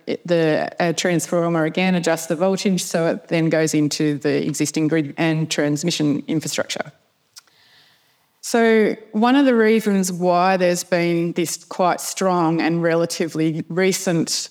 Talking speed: 130 wpm